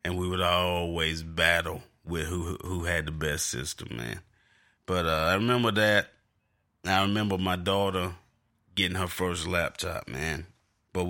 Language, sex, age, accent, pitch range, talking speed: English, male, 30-49, American, 85-115 Hz, 150 wpm